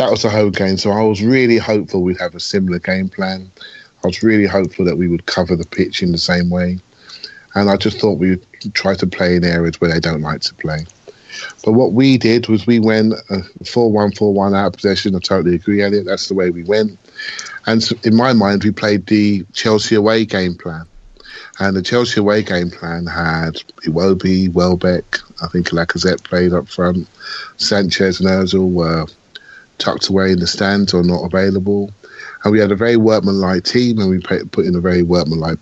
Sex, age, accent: male, 30-49, British